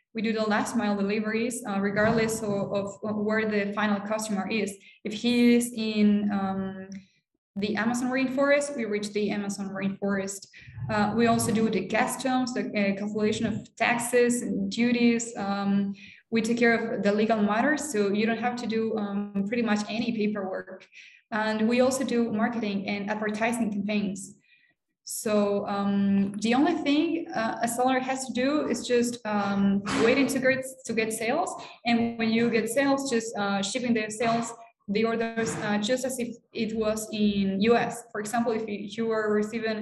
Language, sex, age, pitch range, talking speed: English, female, 20-39, 210-235 Hz, 170 wpm